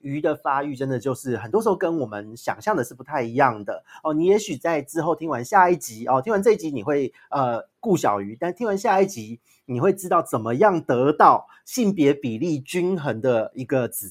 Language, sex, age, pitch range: Chinese, male, 30-49, 125-165 Hz